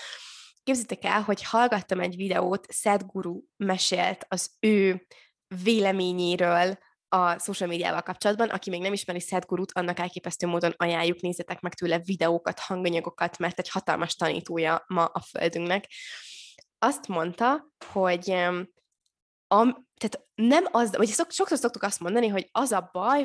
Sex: female